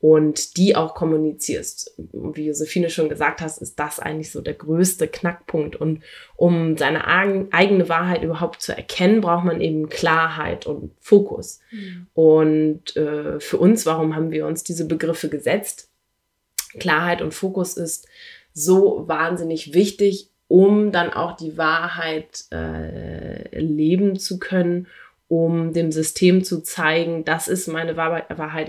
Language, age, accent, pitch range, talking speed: English, 20-39, German, 155-185 Hz, 140 wpm